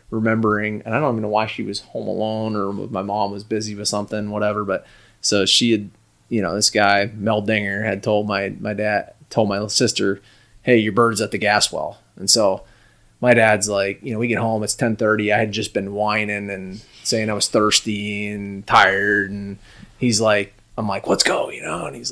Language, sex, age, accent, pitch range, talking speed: English, male, 20-39, American, 105-120 Hz, 220 wpm